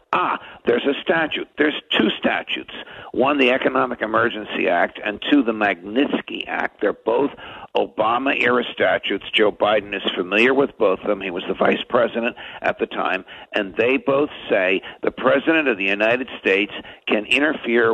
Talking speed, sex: 165 wpm, male